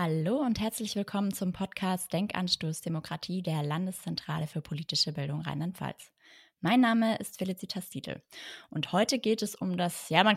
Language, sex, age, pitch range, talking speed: German, female, 20-39, 170-205 Hz, 155 wpm